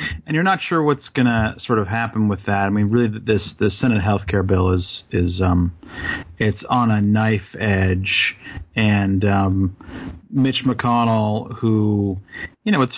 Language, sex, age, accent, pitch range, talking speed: English, male, 40-59, American, 105-125 Hz, 170 wpm